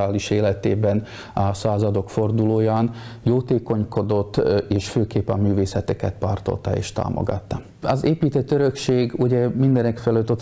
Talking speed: 105 wpm